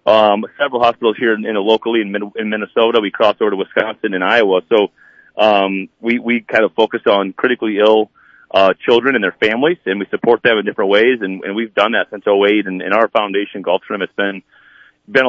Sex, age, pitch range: male, 30-49, 100-115 Hz